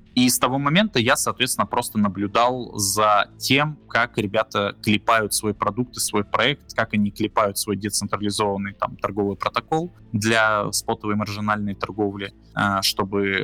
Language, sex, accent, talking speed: Russian, male, native, 135 wpm